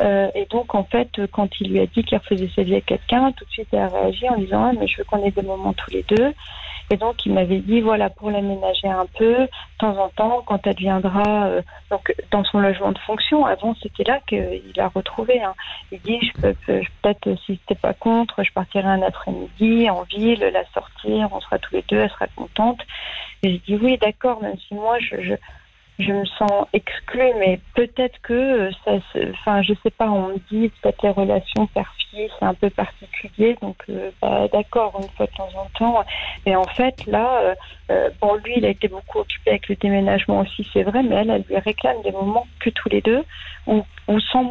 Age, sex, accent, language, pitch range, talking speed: 40-59, female, French, French, 195-230 Hz, 235 wpm